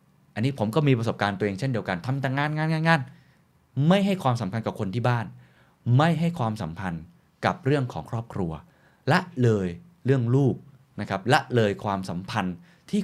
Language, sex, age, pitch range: Thai, male, 20-39, 100-145 Hz